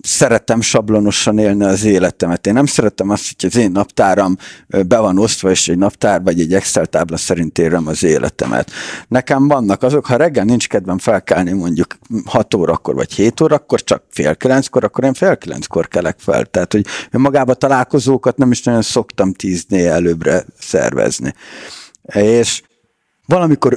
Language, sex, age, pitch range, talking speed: Hungarian, male, 50-69, 105-135 Hz, 155 wpm